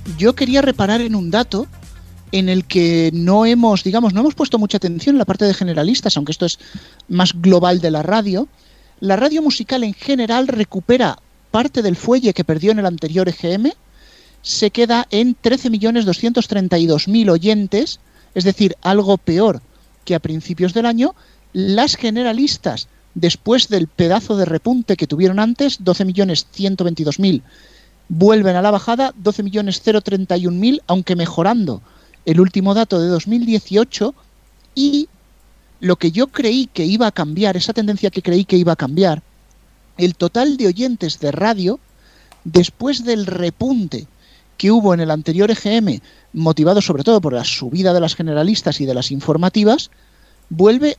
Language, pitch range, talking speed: Spanish, 180-230 Hz, 150 wpm